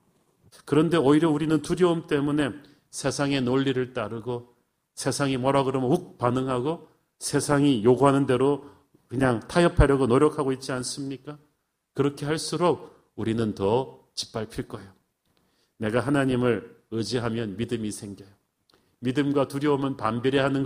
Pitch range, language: 120-150 Hz, Korean